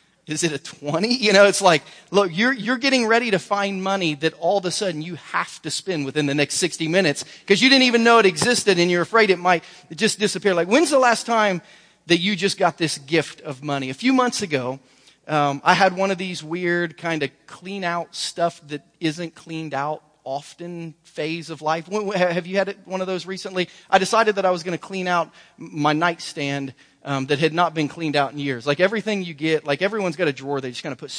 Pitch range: 155-195 Hz